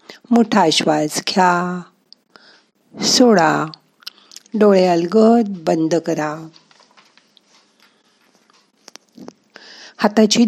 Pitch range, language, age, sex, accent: 170-235 Hz, Marathi, 50-69, female, native